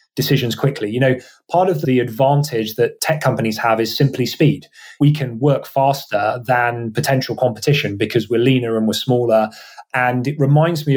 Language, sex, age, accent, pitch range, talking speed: English, male, 30-49, British, 120-145 Hz, 175 wpm